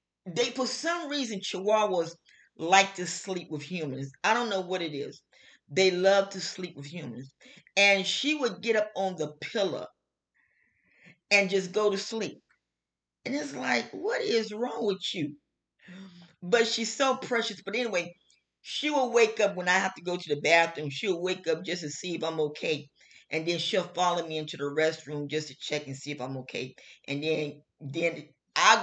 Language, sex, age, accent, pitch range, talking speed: English, female, 40-59, American, 155-215 Hz, 185 wpm